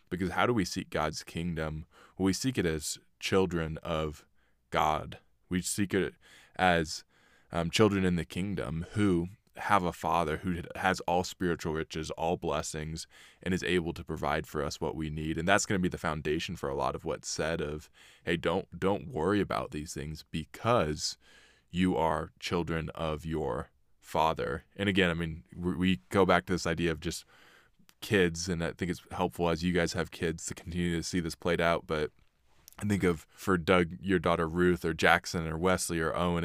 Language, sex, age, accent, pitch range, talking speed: English, male, 20-39, American, 80-90 Hz, 195 wpm